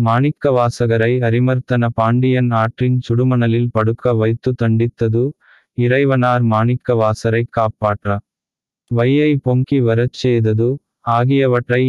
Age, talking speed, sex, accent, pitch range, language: 20-39, 85 wpm, male, native, 115-125 Hz, Tamil